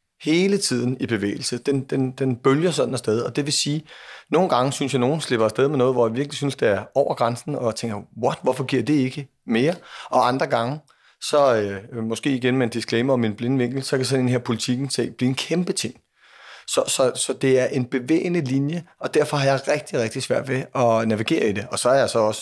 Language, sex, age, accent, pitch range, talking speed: Danish, male, 30-49, native, 115-140 Hz, 245 wpm